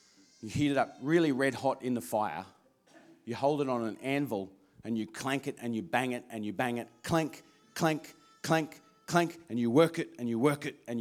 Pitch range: 125-195 Hz